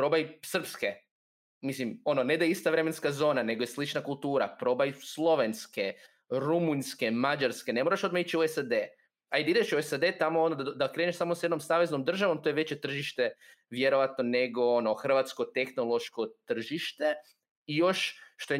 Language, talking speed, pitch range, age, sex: Croatian, 170 wpm, 125-160 Hz, 20-39, male